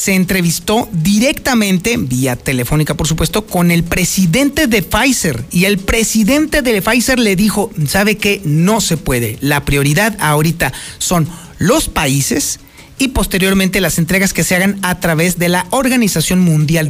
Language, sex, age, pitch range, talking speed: Spanish, male, 50-69, 160-230 Hz, 155 wpm